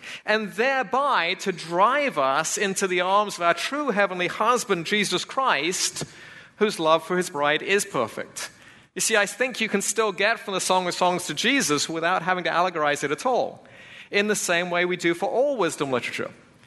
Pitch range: 165-210 Hz